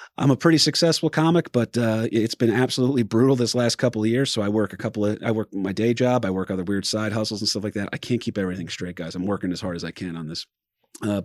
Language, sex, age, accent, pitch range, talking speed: English, male, 30-49, American, 95-120 Hz, 285 wpm